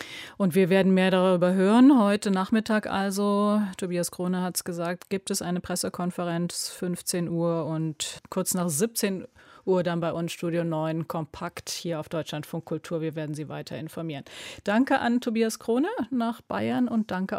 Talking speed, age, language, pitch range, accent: 165 wpm, 30-49, German, 175-215 Hz, German